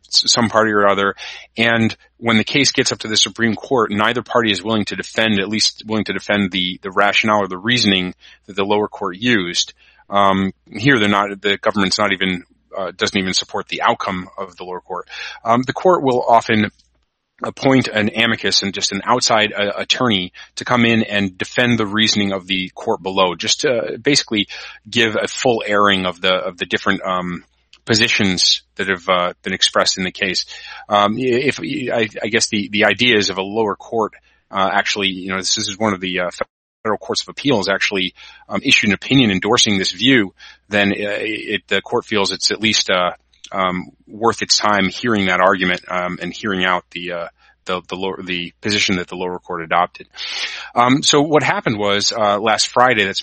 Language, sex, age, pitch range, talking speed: English, male, 30-49, 95-115 Hz, 200 wpm